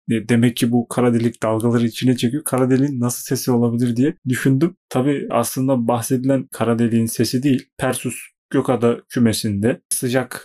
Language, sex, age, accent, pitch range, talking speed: Turkish, male, 30-49, native, 115-135 Hz, 150 wpm